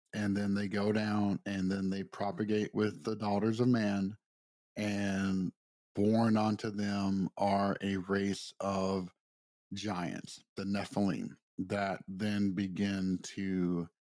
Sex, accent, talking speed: male, American, 125 wpm